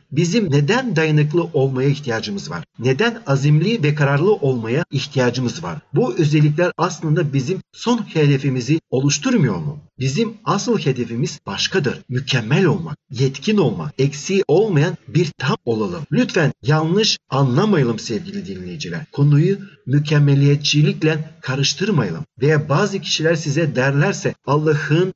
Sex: male